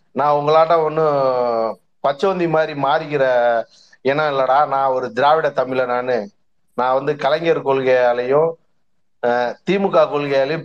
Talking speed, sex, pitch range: 105 wpm, male, 135-170 Hz